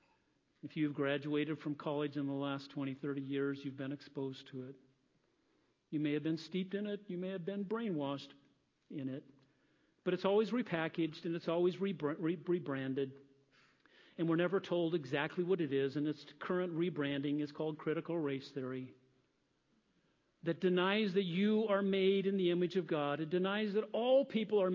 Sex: male